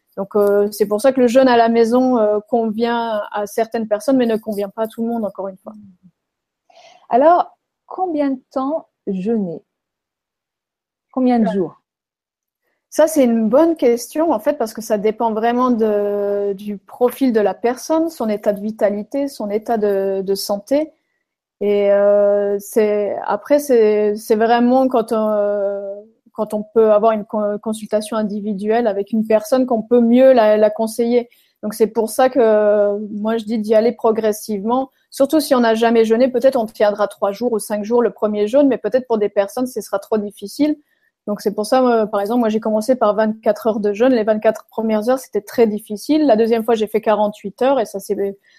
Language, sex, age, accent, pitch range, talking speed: French, female, 30-49, French, 210-245 Hz, 195 wpm